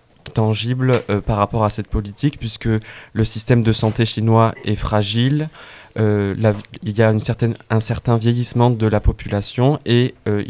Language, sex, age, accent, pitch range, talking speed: French, male, 20-39, French, 110-120 Hz, 170 wpm